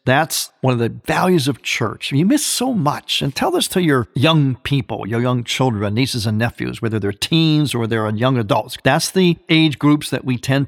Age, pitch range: 50-69, 120-160 Hz